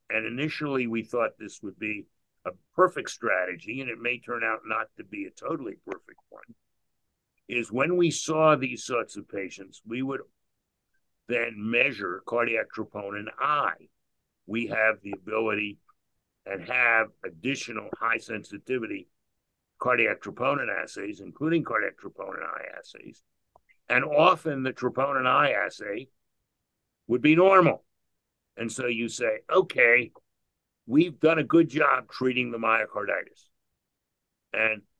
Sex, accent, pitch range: male, American, 115-150 Hz